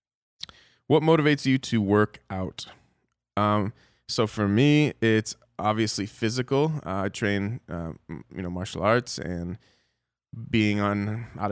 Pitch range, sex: 95-120 Hz, male